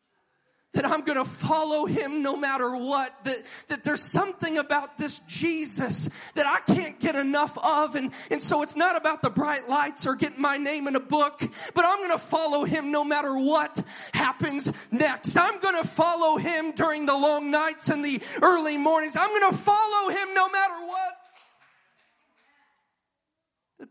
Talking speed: 180 wpm